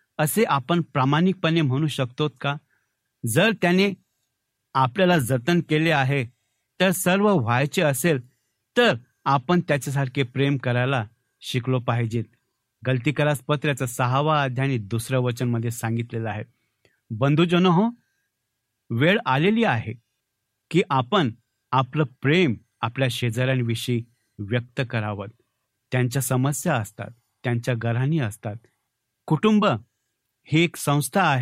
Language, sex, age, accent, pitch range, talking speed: Marathi, male, 60-79, native, 120-155 Hz, 100 wpm